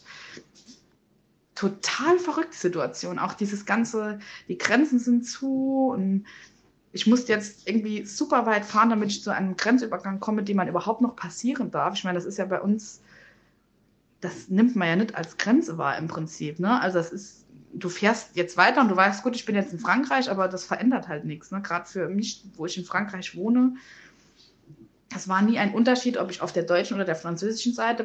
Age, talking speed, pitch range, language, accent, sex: 20-39, 195 wpm, 185-230 Hz, German, German, female